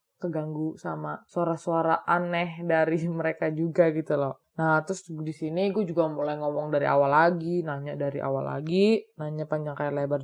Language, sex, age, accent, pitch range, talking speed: Indonesian, female, 20-39, native, 155-190 Hz, 165 wpm